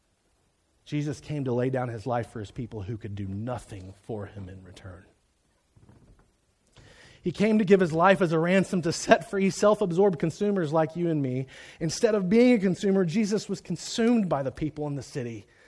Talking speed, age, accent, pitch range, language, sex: 190 wpm, 30-49, American, 150-225 Hz, English, male